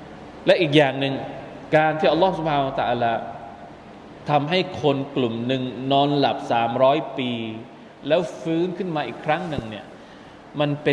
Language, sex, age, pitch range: Thai, male, 20-39, 130-175 Hz